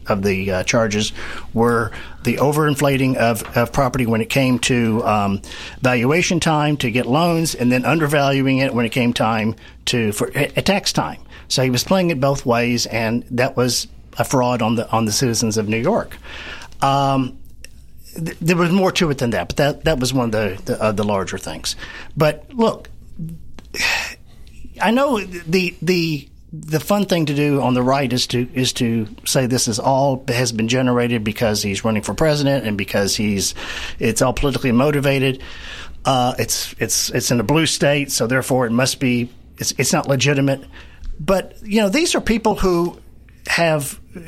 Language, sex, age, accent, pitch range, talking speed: English, male, 40-59, American, 115-150 Hz, 185 wpm